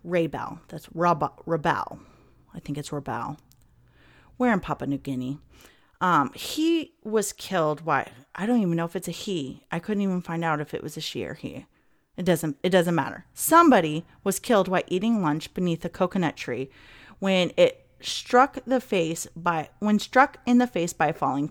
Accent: American